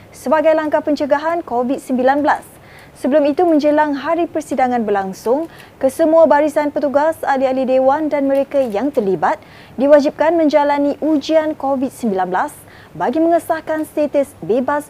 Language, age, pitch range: Malay, 20-39, 250-300 Hz